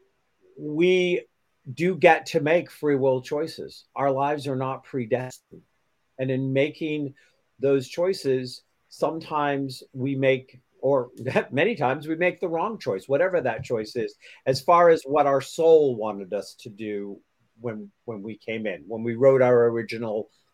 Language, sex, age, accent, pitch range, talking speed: English, male, 50-69, American, 120-155 Hz, 155 wpm